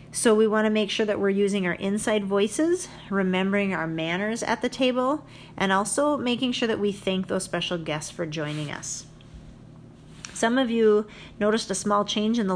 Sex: female